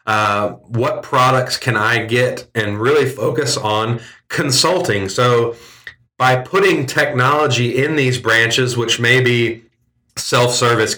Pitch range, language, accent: 110-130 Hz, English, American